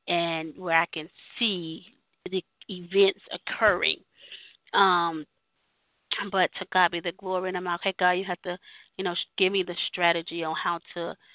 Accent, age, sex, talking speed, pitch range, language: American, 20-39, female, 175 wpm, 170-185 Hz, English